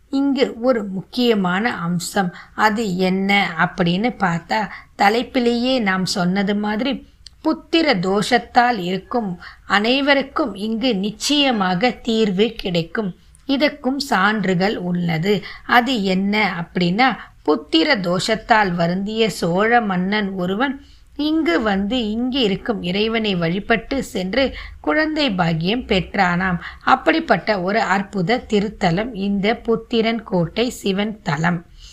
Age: 20-39